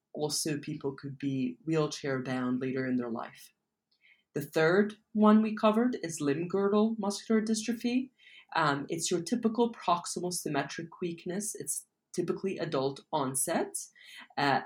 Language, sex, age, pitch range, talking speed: English, female, 30-49, 140-200 Hz, 125 wpm